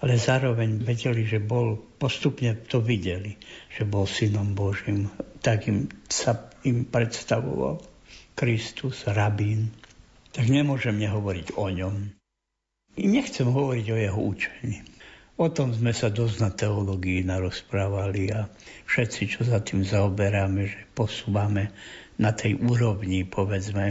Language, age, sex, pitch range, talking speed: Slovak, 60-79, male, 100-130 Hz, 125 wpm